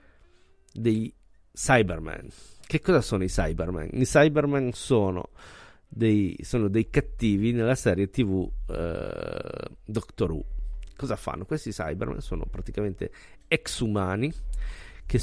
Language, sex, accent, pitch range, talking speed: Italian, male, native, 90-115 Hz, 115 wpm